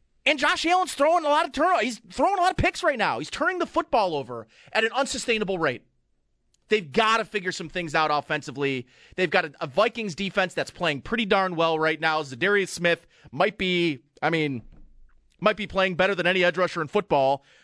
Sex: male